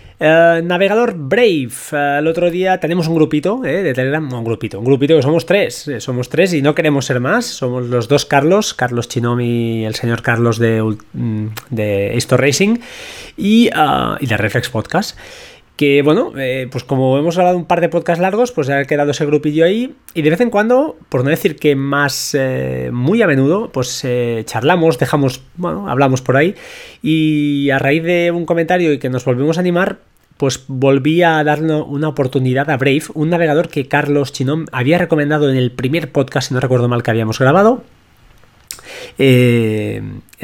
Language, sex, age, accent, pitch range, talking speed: Spanish, male, 20-39, Spanish, 125-170 Hz, 190 wpm